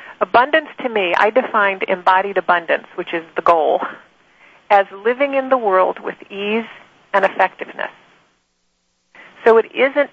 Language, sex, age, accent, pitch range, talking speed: English, female, 40-59, American, 170-215 Hz, 135 wpm